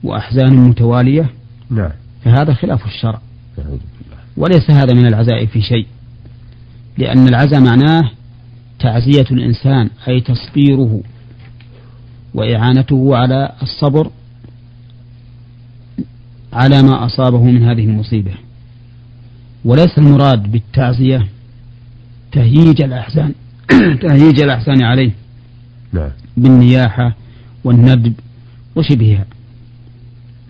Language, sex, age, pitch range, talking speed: Arabic, male, 40-59, 120-125 Hz, 75 wpm